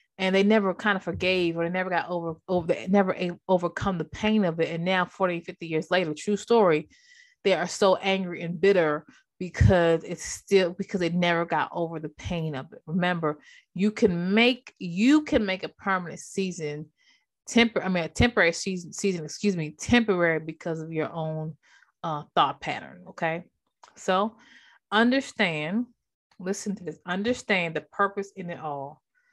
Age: 30-49